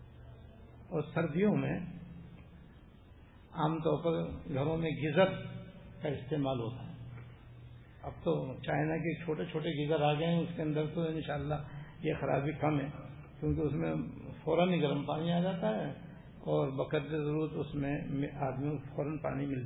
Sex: male